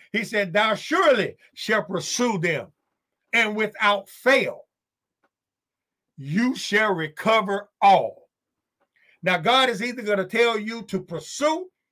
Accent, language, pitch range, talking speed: American, English, 150-210 Hz, 120 wpm